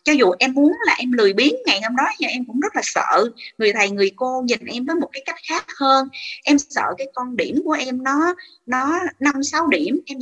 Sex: female